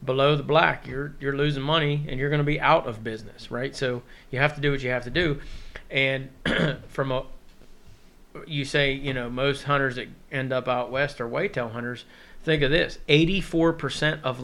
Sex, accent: male, American